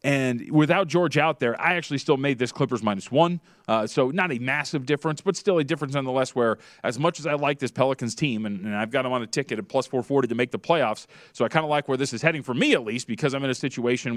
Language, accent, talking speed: English, American, 280 wpm